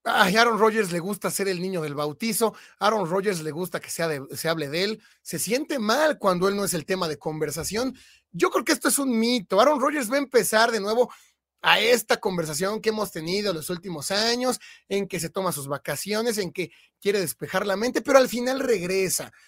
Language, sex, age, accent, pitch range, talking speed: Spanish, male, 30-49, Mexican, 180-245 Hz, 220 wpm